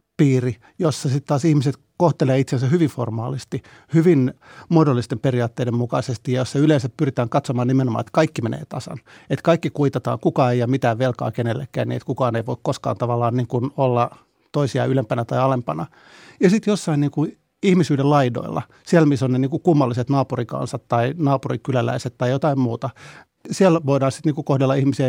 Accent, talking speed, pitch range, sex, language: native, 170 wpm, 125-145 Hz, male, Finnish